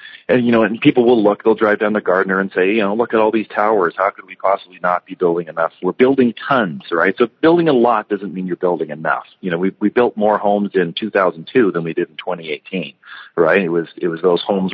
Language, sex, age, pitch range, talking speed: English, male, 40-59, 85-105 Hz, 270 wpm